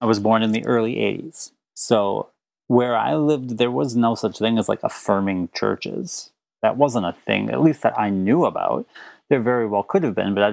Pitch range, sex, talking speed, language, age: 100-125 Hz, male, 215 wpm, English, 30-49